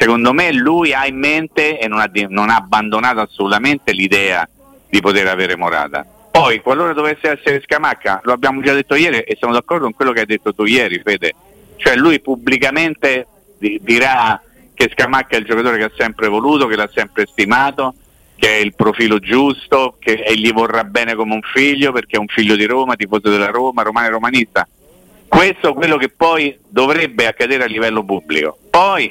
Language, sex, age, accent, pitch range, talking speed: Italian, male, 50-69, native, 105-135 Hz, 190 wpm